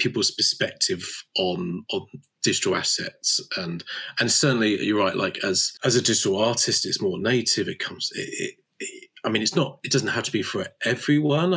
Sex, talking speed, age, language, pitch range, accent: male, 185 wpm, 30-49, English, 105-165 Hz, British